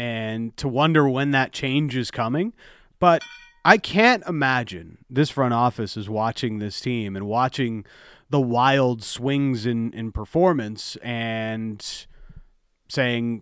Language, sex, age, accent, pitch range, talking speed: English, male, 30-49, American, 115-155 Hz, 130 wpm